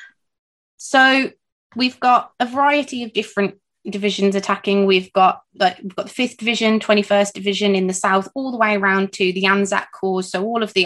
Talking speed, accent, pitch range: 195 wpm, British, 180-220 Hz